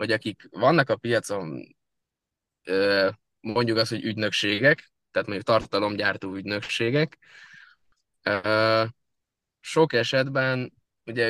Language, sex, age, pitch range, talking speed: Hungarian, male, 20-39, 105-120 Hz, 85 wpm